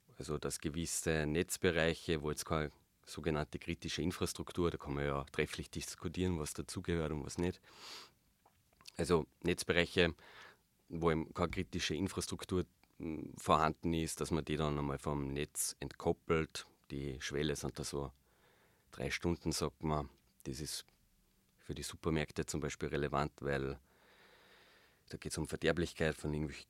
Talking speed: 140 wpm